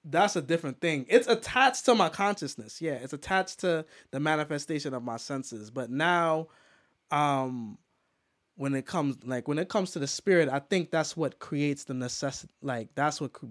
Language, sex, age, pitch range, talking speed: English, male, 20-39, 135-175 Hz, 180 wpm